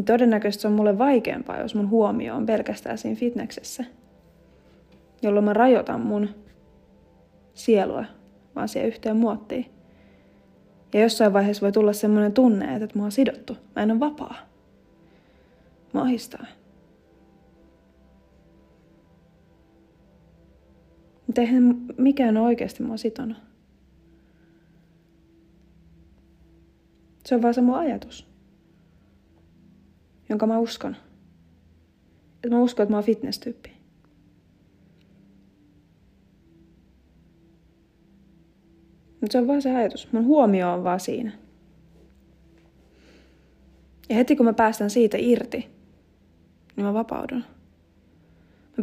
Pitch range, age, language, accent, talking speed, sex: 170-245 Hz, 30-49, Finnish, native, 100 wpm, female